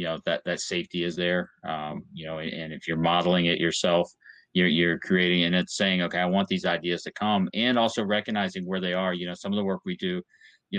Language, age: English, 30-49